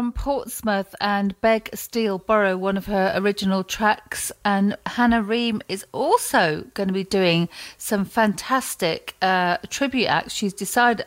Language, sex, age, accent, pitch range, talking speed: English, female, 40-59, British, 190-230 Hz, 145 wpm